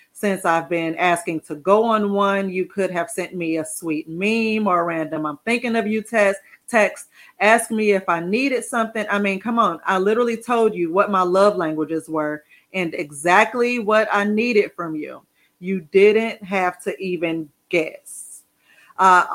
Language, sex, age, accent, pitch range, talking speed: English, female, 30-49, American, 170-210 Hz, 180 wpm